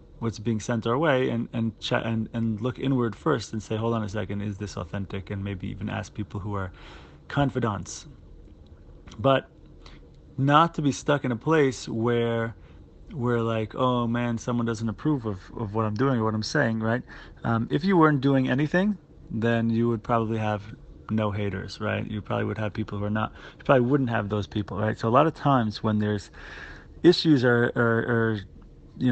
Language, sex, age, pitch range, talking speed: English, male, 30-49, 105-130 Hz, 200 wpm